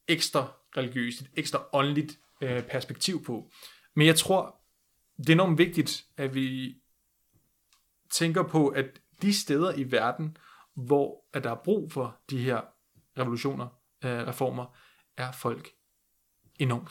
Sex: male